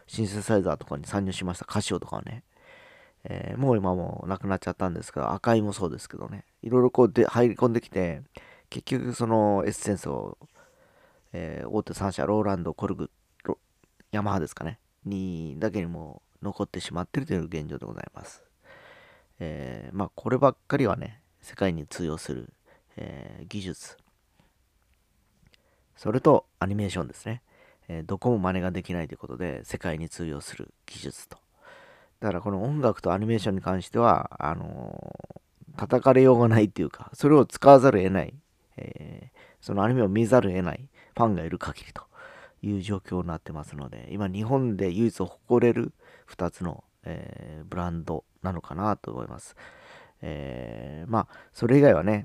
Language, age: Japanese, 40-59